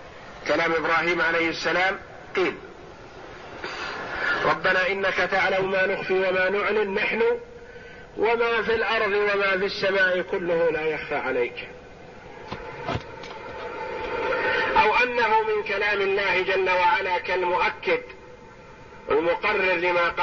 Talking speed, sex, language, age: 100 wpm, male, Arabic, 40-59